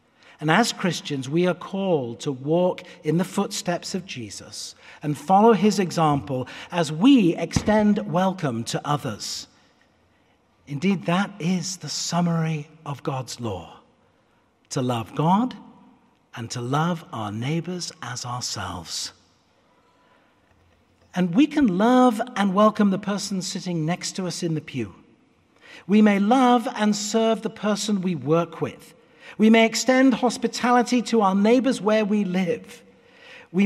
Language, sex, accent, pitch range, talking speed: English, male, British, 150-210 Hz, 135 wpm